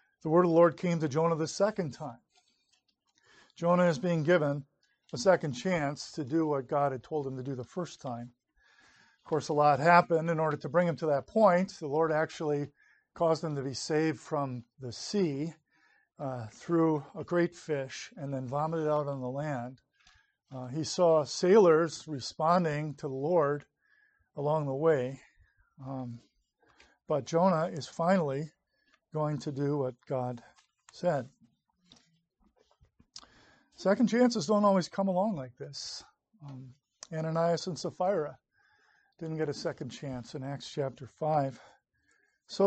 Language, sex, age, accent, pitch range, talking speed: English, male, 50-69, American, 140-175 Hz, 155 wpm